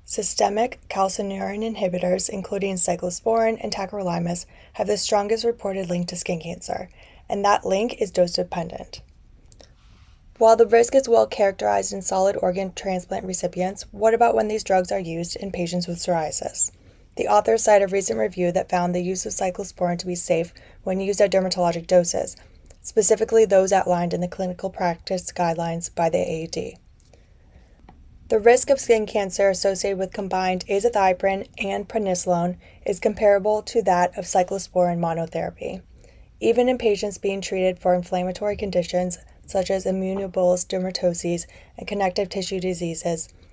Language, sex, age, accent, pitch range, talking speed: English, female, 20-39, American, 180-205 Hz, 150 wpm